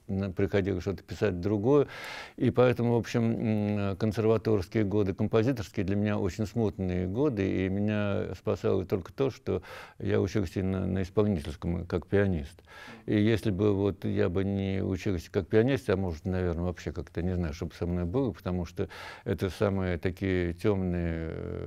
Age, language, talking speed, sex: 60-79, Russian, 150 wpm, male